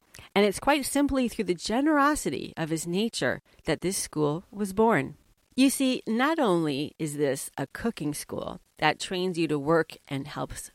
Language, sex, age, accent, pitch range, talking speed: English, female, 40-59, American, 155-230 Hz, 175 wpm